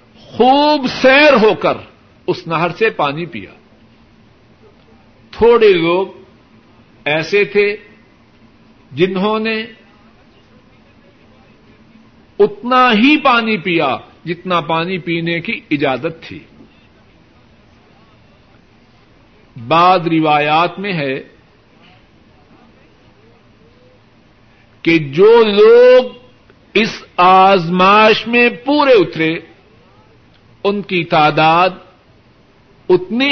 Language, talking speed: Urdu, 75 wpm